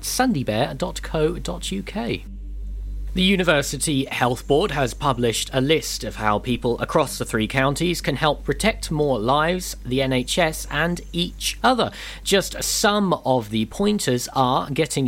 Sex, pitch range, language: male, 120-170 Hz, English